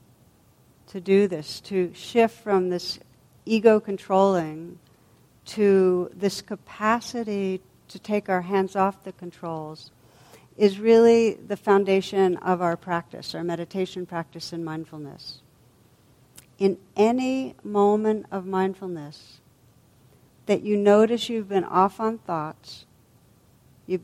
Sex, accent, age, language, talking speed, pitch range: female, American, 60-79, English, 110 wpm, 155-205 Hz